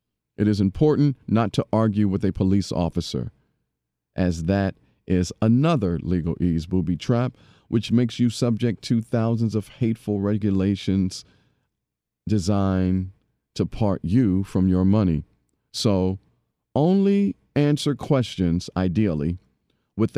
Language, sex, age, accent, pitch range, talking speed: English, male, 40-59, American, 90-120 Hz, 120 wpm